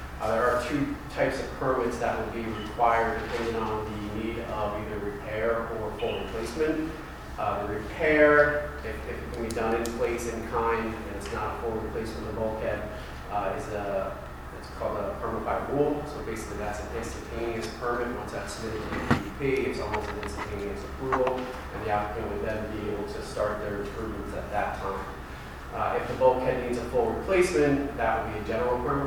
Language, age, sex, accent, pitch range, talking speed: English, 30-49, male, American, 100-125 Hz, 200 wpm